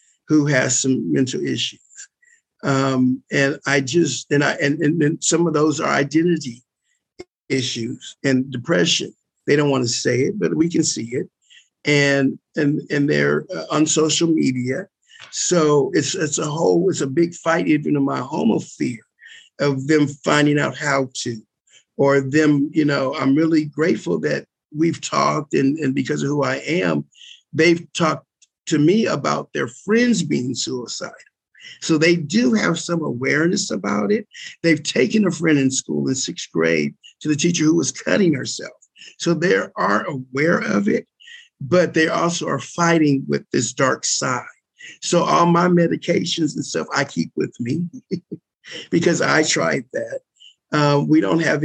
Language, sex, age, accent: English, male, 50-69, American